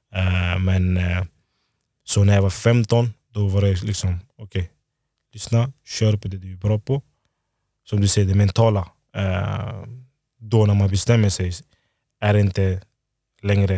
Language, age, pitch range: Swedish, 20-39, 100-115 Hz